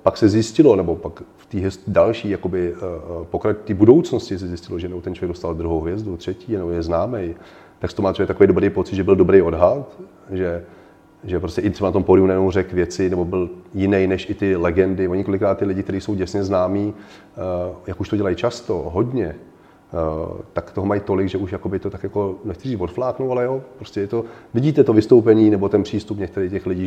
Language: Czech